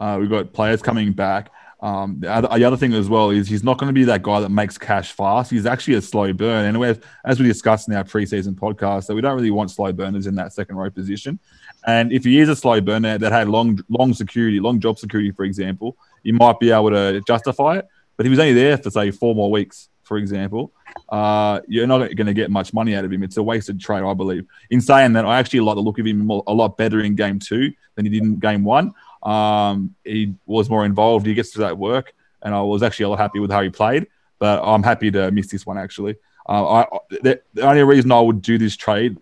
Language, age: English, 20-39